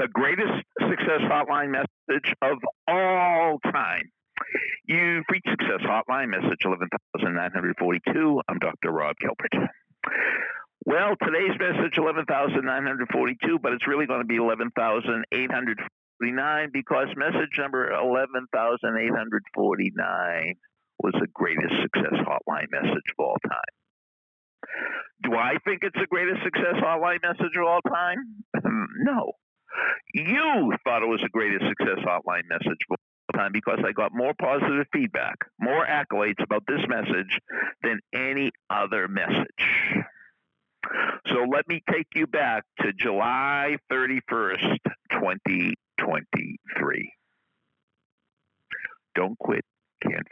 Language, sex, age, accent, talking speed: English, male, 60-79, American, 115 wpm